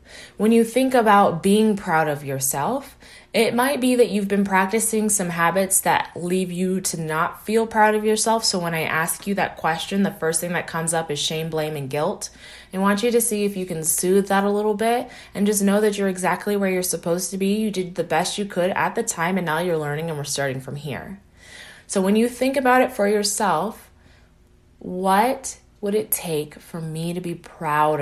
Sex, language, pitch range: female, English, 160-215 Hz